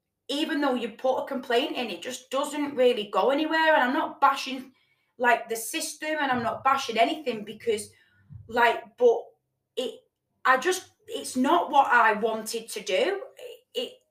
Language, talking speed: English, 165 wpm